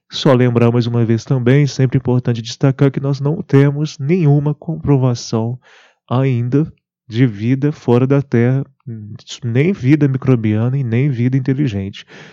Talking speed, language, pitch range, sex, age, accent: 135 wpm, Portuguese, 115-140 Hz, male, 20-39, Brazilian